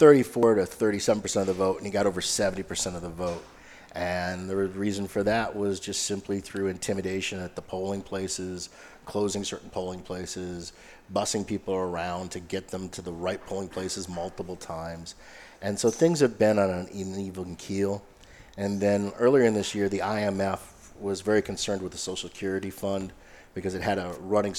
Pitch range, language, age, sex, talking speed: 90-100 Hz, English, 40-59, male, 185 wpm